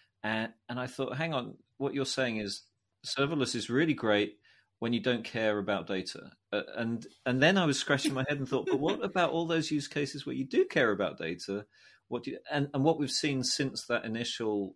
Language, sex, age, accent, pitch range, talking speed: English, male, 30-49, British, 90-115 Hz, 225 wpm